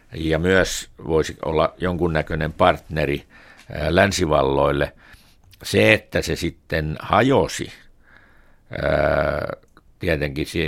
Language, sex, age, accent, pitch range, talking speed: Finnish, male, 60-79, native, 70-85 Hz, 75 wpm